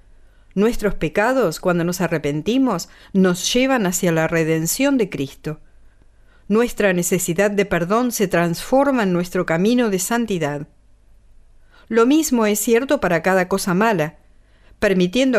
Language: English